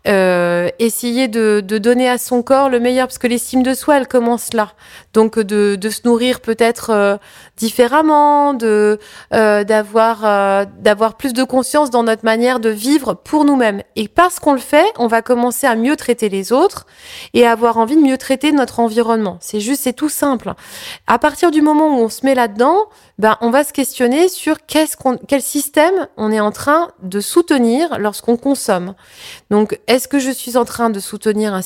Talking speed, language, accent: 200 wpm, French, French